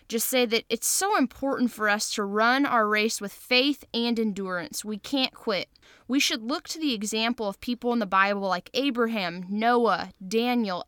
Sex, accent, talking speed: female, American, 190 wpm